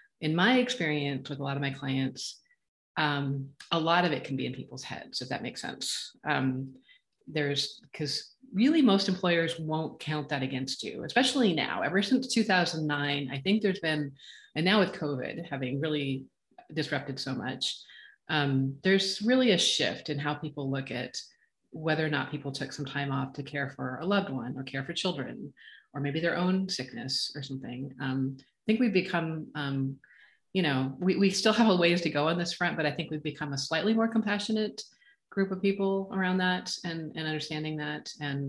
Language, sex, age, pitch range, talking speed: English, female, 30-49, 140-185 Hz, 195 wpm